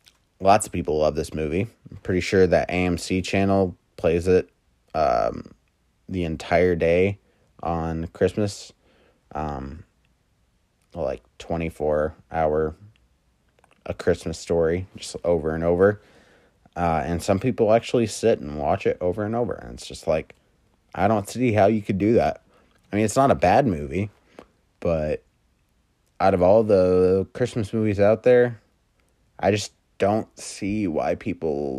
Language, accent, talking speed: English, American, 145 wpm